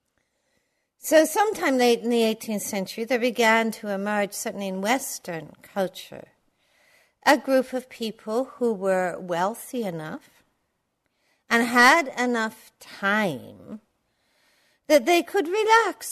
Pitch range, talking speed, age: 190-275 Hz, 115 wpm, 60-79